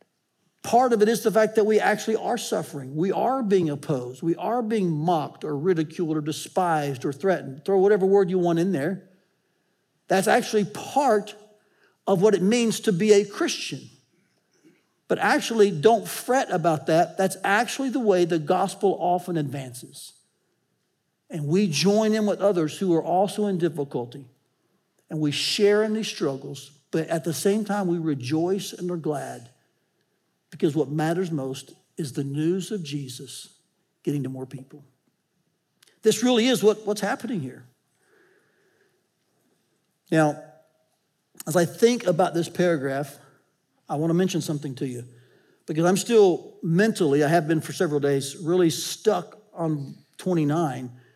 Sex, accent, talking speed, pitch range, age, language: male, American, 155 wpm, 150-205 Hz, 60-79, English